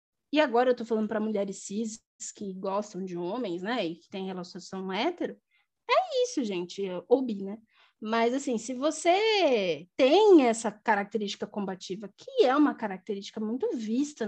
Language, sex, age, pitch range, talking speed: Portuguese, female, 10-29, 220-355 Hz, 165 wpm